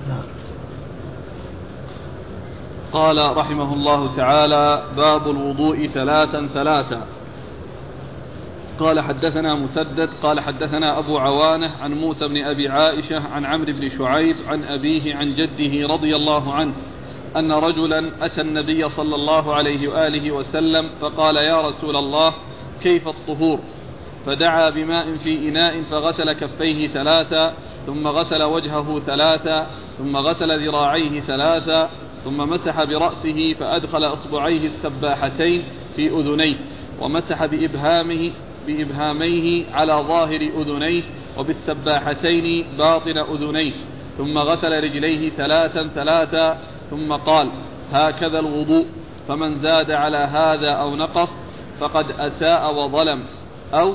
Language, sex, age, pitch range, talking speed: Arabic, male, 40-59, 145-160 Hz, 110 wpm